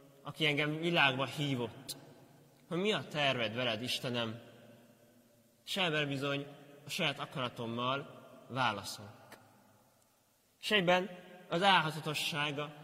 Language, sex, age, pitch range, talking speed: Hungarian, male, 30-49, 125-155 Hz, 90 wpm